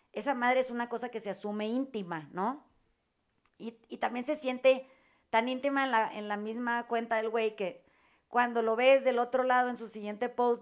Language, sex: Spanish, female